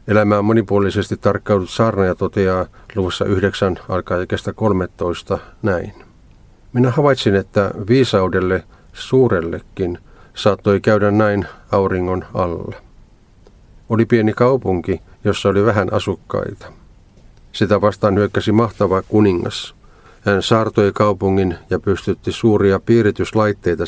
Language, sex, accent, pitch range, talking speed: Finnish, male, native, 95-110 Hz, 100 wpm